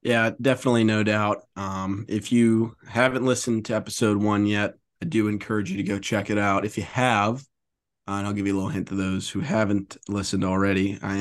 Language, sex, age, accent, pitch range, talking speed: English, male, 20-39, American, 100-120 Hz, 215 wpm